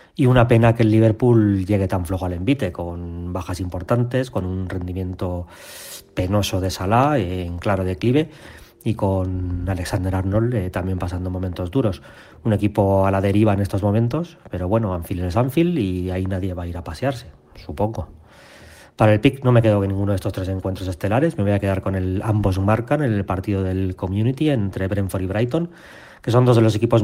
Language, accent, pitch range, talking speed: Spanish, Spanish, 95-110 Hz, 195 wpm